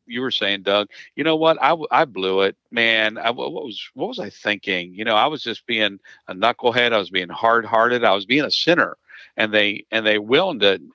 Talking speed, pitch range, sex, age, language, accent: 230 wpm, 100-120 Hz, male, 50-69, English, American